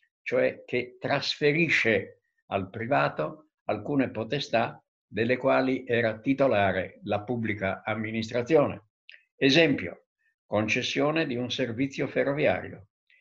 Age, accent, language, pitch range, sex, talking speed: 60-79, native, Italian, 105-140 Hz, male, 90 wpm